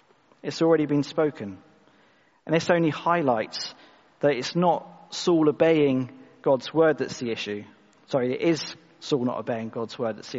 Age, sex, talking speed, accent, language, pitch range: 40-59, male, 160 wpm, British, English, 130-155 Hz